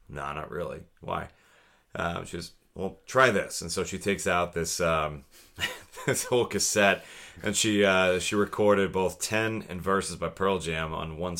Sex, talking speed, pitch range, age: male, 180 wpm, 80-95 Hz, 30-49